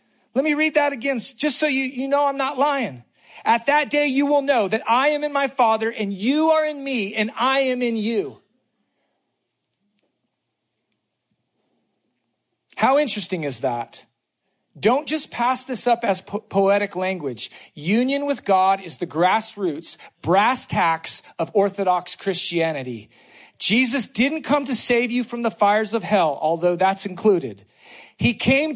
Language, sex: English, male